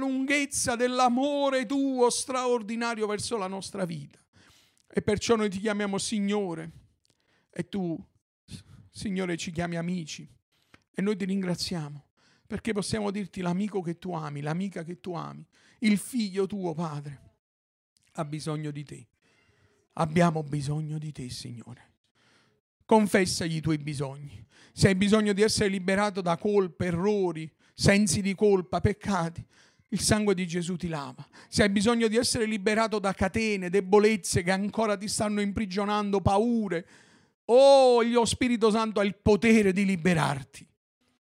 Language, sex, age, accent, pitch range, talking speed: Italian, male, 50-69, native, 155-210 Hz, 140 wpm